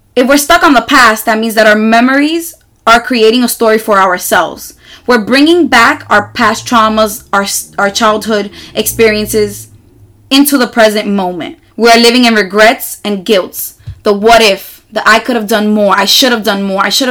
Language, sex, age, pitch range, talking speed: English, female, 20-39, 210-255 Hz, 185 wpm